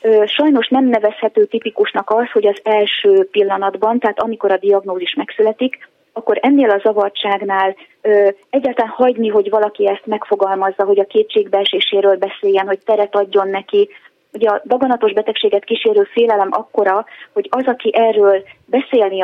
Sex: female